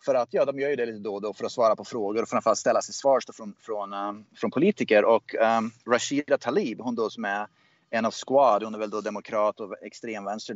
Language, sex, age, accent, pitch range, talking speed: Swedish, male, 30-49, native, 115-170 Hz, 245 wpm